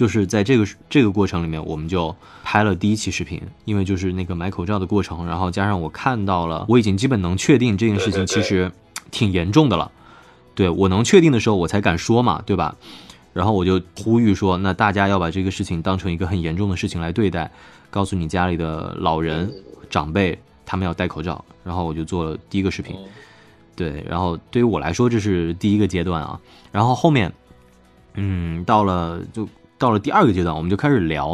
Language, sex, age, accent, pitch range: Chinese, male, 20-39, native, 85-110 Hz